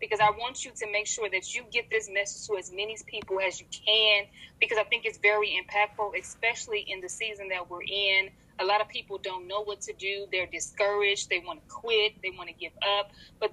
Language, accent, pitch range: English, American, 185-215 Hz